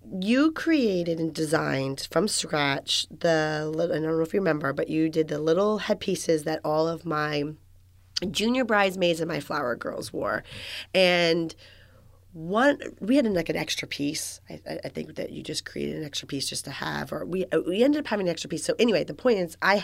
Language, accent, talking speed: English, American, 205 wpm